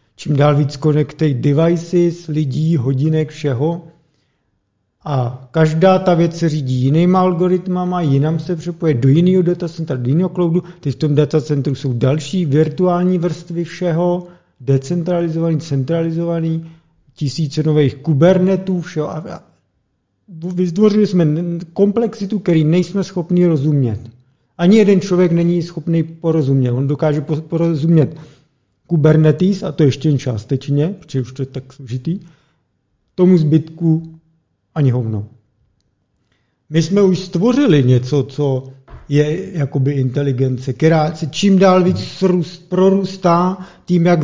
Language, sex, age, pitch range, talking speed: Czech, male, 50-69, 140-175 Hz, 120 wpm